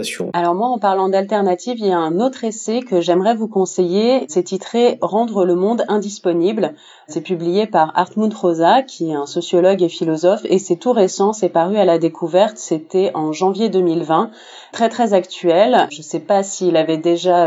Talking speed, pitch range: 190 wpm, 165-205 Hz